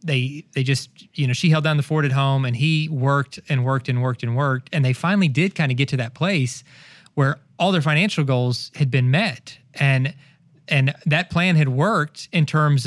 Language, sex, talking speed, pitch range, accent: English, male, 220 wpm, 130-155 Hz, American